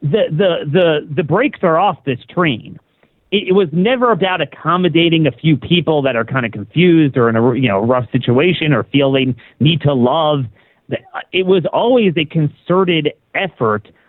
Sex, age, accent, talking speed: male, 40-59, American, 175 wpm